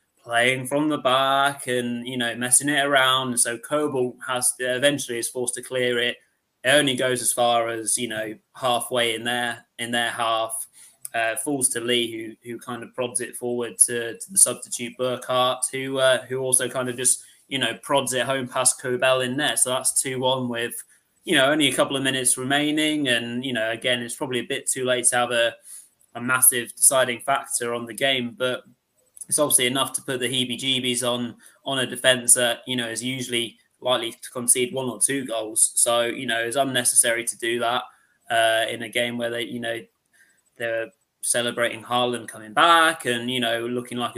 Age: 20-39